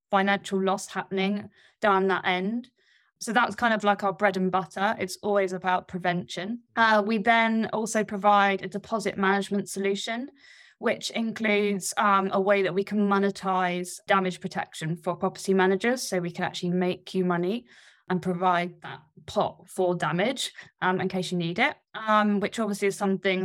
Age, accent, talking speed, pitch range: 20-39, British, 170 wpm, 180-210 Hz